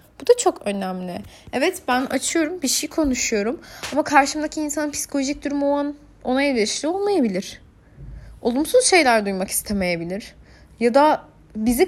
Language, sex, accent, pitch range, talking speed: Turkish, female, native, 205-290 Hz, 130 wpm